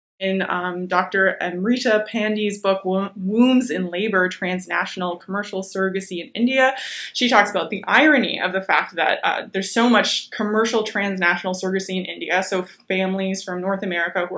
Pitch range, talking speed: 180-210 Hz, 165 wpm